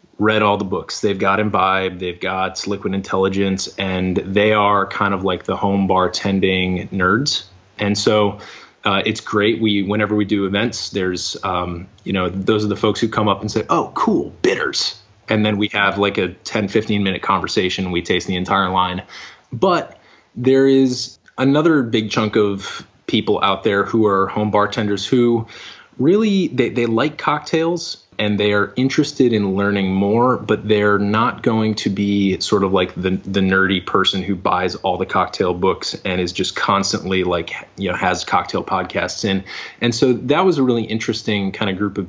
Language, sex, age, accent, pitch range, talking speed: English, male, 20-39, American, 95-110 Hz, 185 wpm